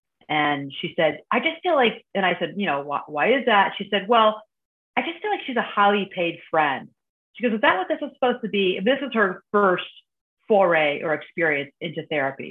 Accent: American